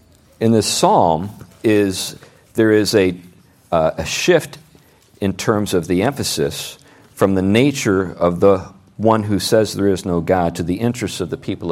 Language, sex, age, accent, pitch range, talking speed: English, male, 50-69, American, 90-110 Hz, 170 wpm